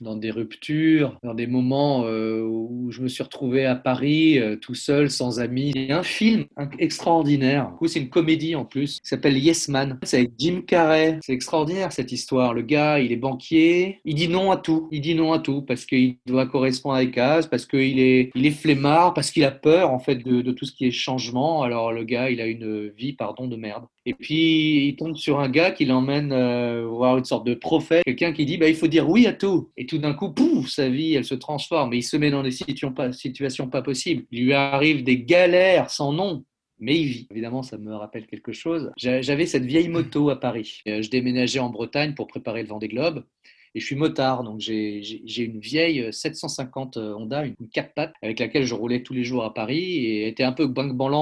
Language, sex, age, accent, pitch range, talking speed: French, male, 30-49, French, 120-155 Hz, 235 wpm